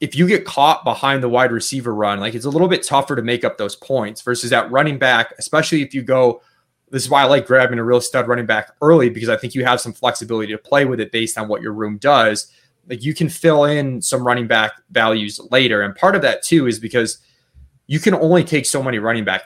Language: English